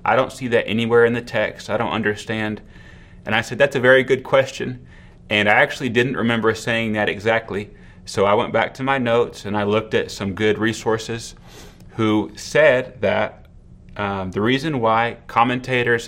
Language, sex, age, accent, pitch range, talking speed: English, male, 30-49, American, 100-120 Hz, 185 wpm